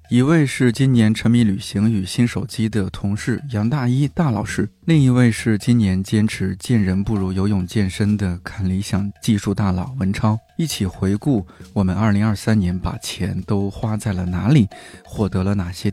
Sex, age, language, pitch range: male, 20-39, Chinese, 110-145 Hz